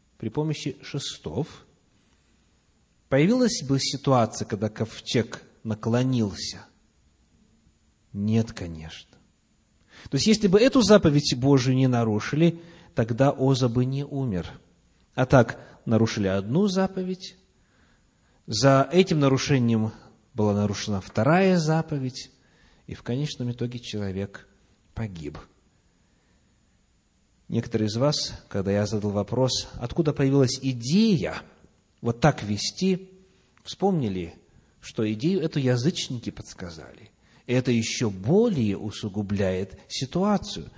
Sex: male